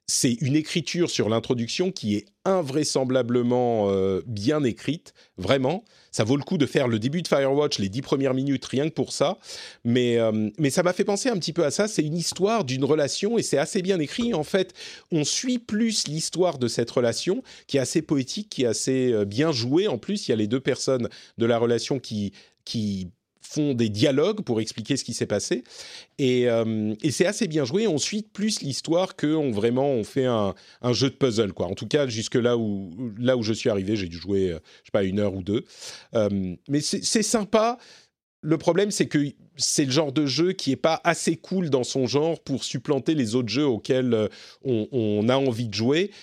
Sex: male